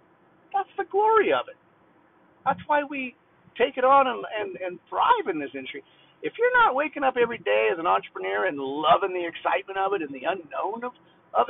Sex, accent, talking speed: male, American, 200 wpm